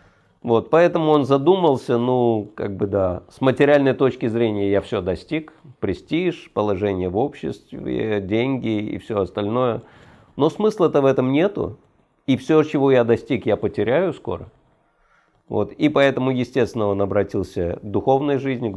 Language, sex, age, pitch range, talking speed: Russian, male, 50-69, 100-135 Hz, 145 wpm